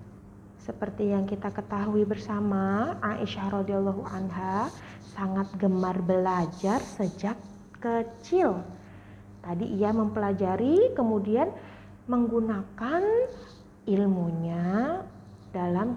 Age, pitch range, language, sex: 30-49, 185-240 Hz, Indonesian, female